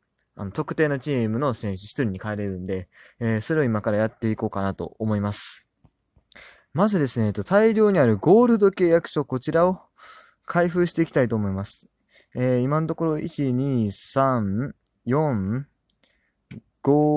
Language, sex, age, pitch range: Japanese, male, 20-39, 100-150 Hz